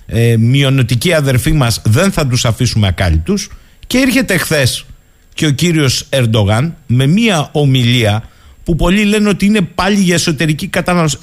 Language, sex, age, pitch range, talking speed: Greek, male, 50-69, 120-180 Hz, 150 wpm